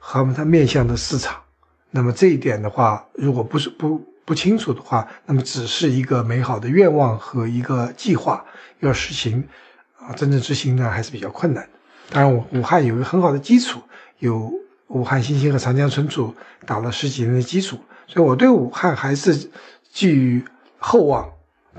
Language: Chinese